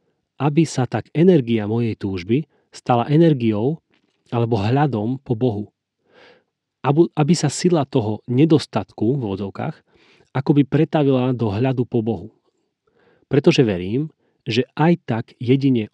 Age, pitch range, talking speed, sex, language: 30-49, 115-145 Hz, 120 wpm, male, Slovak